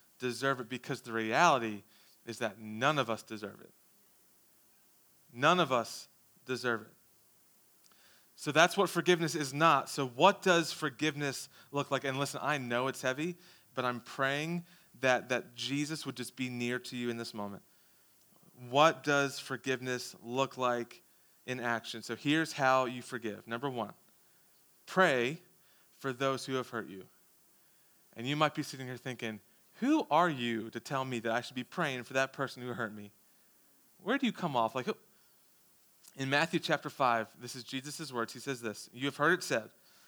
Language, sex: English, male